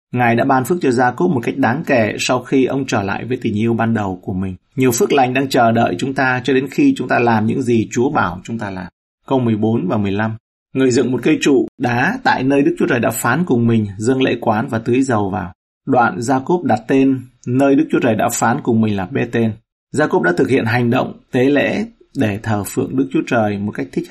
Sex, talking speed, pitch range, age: male, 250 wpm, 110-130 Hz, 30-49